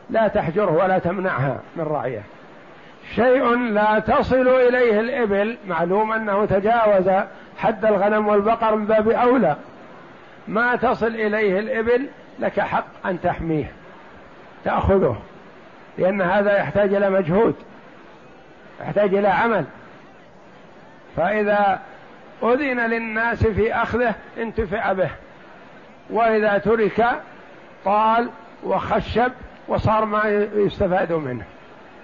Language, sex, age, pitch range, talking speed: Arabic, male, 60-79, 190-225 Hz, 95 wpm